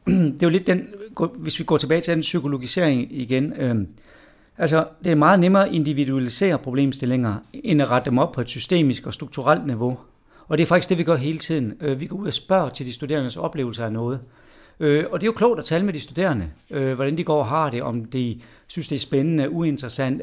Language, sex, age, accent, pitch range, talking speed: Danish, male, 60-79, native, 135-175 Hz, 225 wpm